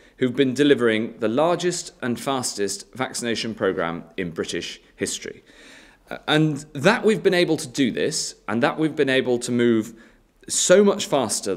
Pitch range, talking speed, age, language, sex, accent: 110-155 Hz, 155 wpm, 30-49, English, male, British